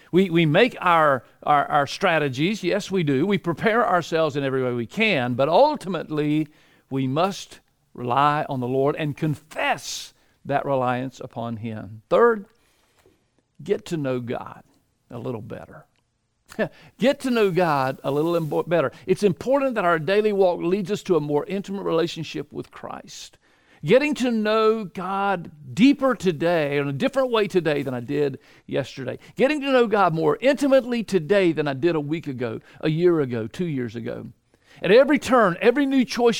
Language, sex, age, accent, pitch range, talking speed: English, male, 50-69, American, 145-215 Hz, 170 wpm